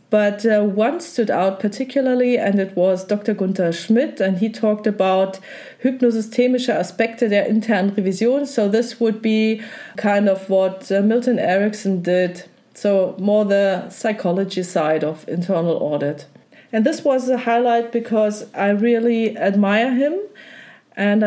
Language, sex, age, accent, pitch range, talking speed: German, female, 30-49, German, 190-235 Hz, 140 wpm